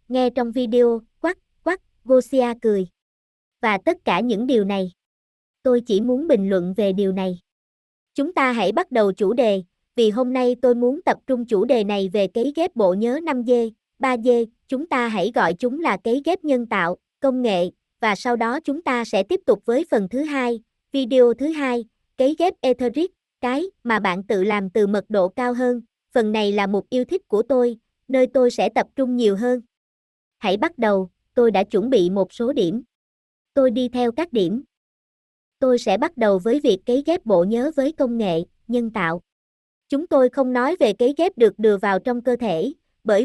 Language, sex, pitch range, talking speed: Vietnamese, male, 215-270 Hz, 200 wpm